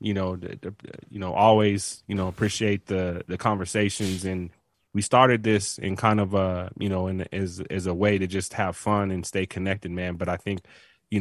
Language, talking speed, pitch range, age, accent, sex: English, 205 wpm, 90-100 Hz, 20-39, American, male